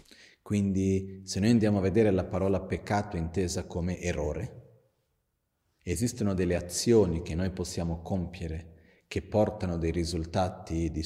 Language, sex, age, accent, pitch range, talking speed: Italian, male, 40-59, native, 85-100 Hz, 130 wpm